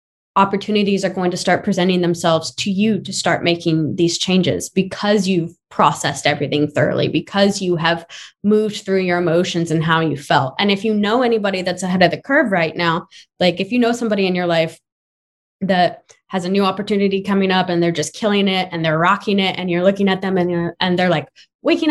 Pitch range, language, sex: 175-215 Hz, English, female